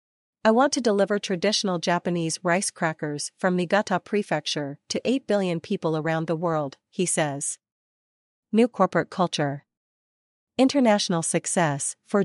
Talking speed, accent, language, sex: 125 wpm, American, English, female